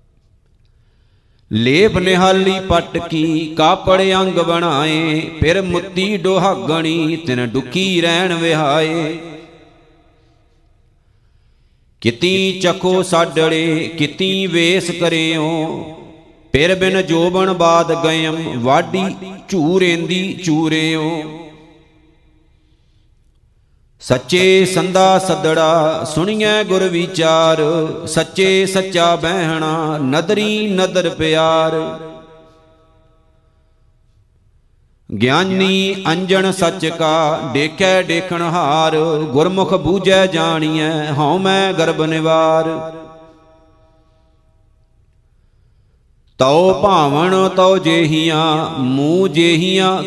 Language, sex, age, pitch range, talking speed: Punjabi, male, 50-69, 155-185 Hz, 70 wpm